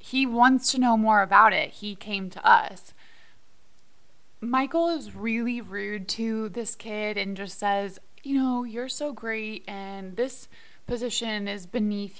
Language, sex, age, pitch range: English, female, 20-39, 190-245 Hz